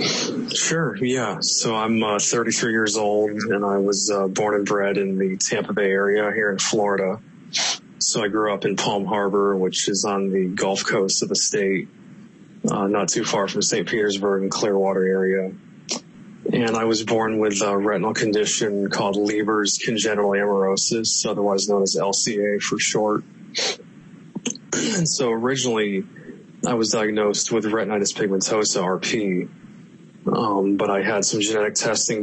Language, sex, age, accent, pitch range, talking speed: English, male, 30-49, American, 95-110 Hz, 155 wpm